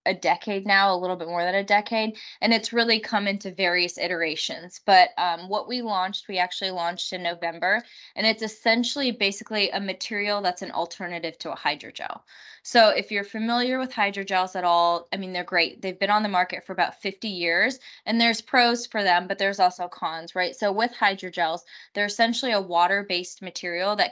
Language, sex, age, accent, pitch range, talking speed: English, female, 20-39, American, 175-210 Hz, 195 wpm